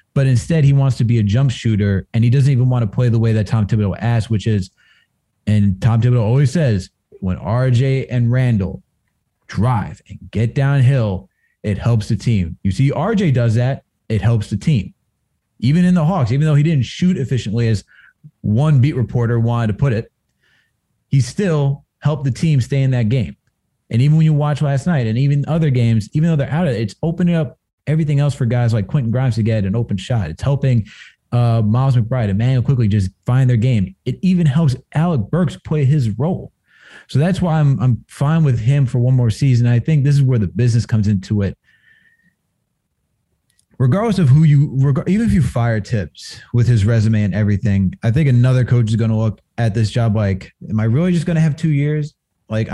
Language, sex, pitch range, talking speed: English, male, 110-145 Hz, 215 wpm